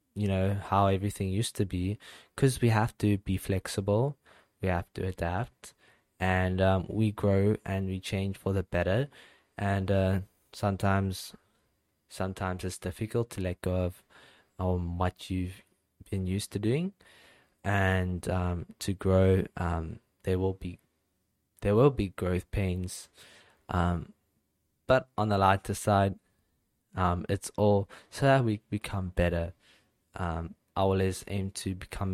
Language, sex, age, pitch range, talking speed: English, male, 20-39, 90-105 Hz, 145 wpm